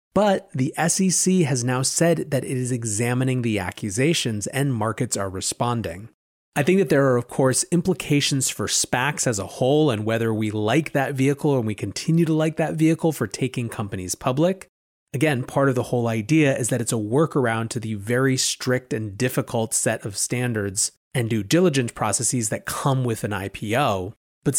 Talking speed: 185 wpm